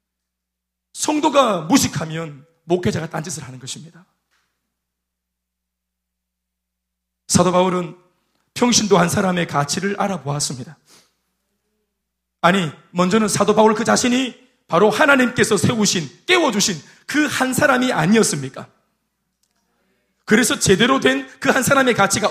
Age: 40-59